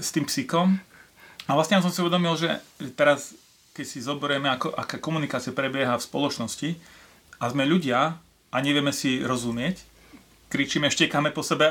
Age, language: 30-49, Slovak